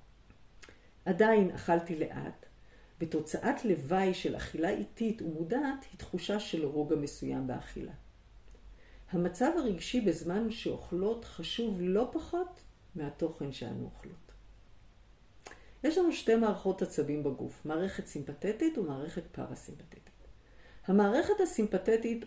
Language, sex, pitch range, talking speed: Hebrew, female, 145-210 Hz, 100 wpm